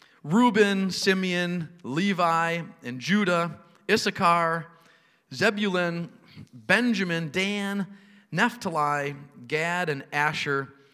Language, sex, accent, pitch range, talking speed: English, male, American, 145-200 Hz, 70 wpm